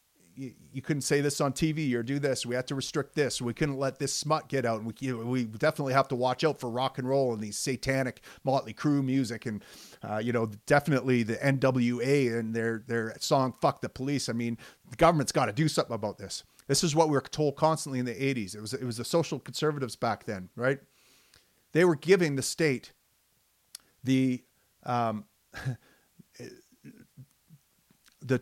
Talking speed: 195 wpm